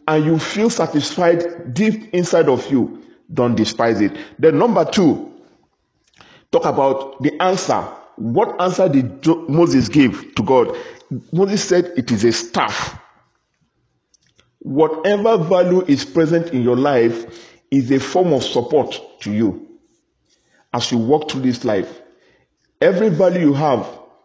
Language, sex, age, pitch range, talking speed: English, male, 50-69, 130-180 Hz, 135 wpm